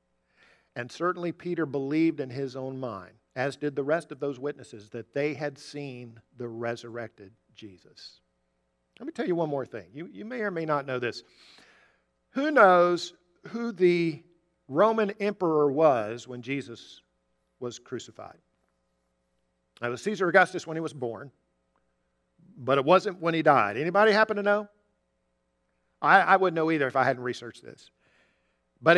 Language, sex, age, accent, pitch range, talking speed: English, male, 50-69, American, 115-175 Hz, 160 wpm